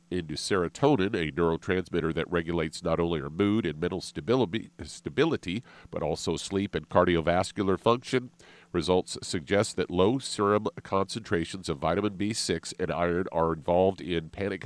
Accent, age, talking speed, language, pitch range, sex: American, 50-69, 140 wpm, English, 85-105 Hz, male